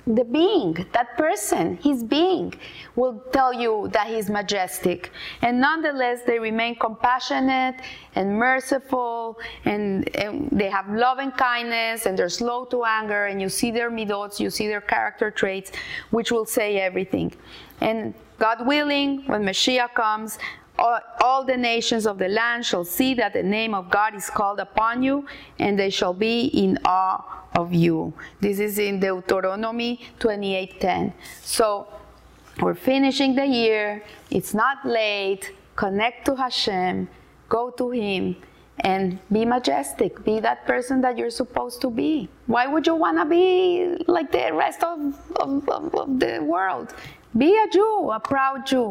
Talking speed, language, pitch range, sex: 155 wpm, English, 205-265 Hz, female